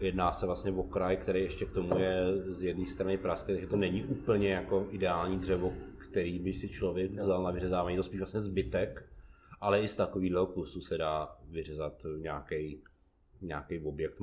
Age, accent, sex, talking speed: 30-49, native, male, 180 wpm